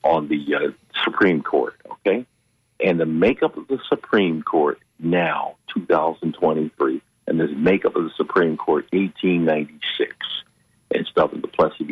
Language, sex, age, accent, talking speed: English, male, 50-69, American, 120 wpm